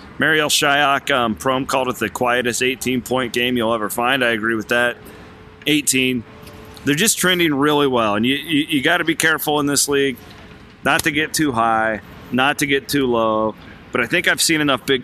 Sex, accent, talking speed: male, American, 200 wpm